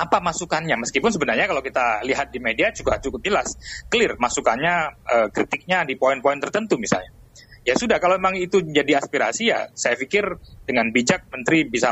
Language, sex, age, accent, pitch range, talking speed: Indonesian, male, 30-49, native, 125-170 Hz, 170 wpm